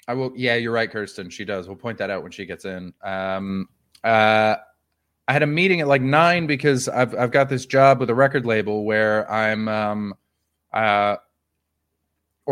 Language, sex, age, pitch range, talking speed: English, male, 20-39, 80-130 Hz, 185 wpm